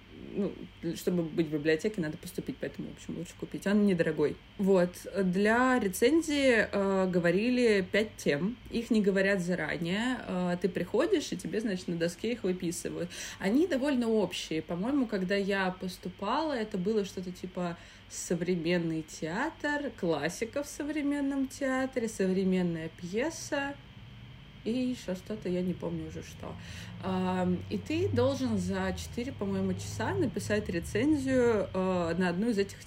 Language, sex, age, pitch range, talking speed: Russian, female, 20-39, 170-220 Hz, 135 wpm